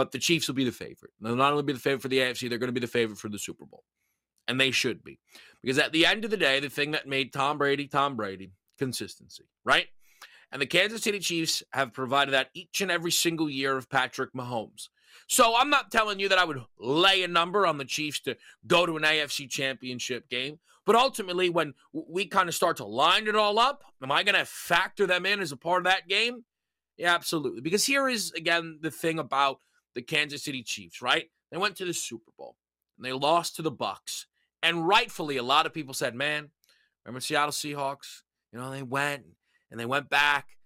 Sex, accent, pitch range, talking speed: male, American, 130-175 Hz, 225 wpm